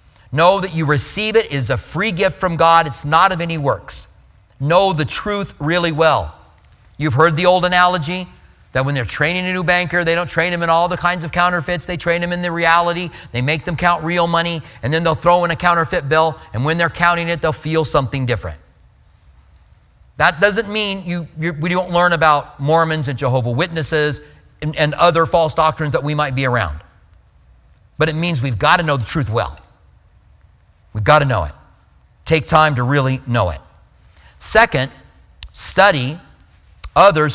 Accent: American